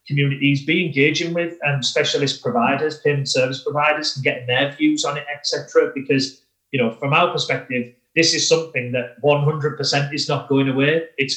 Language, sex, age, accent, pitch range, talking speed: English, male, 30-49, British, 130-160 Hz, 185 wpm